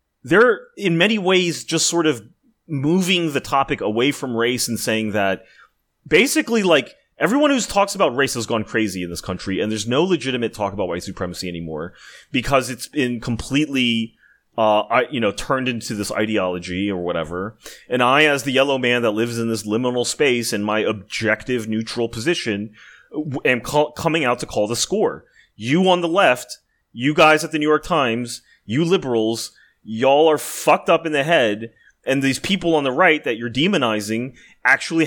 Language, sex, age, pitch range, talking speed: English, male, 30-49, 110-155 Hz, 180 wpm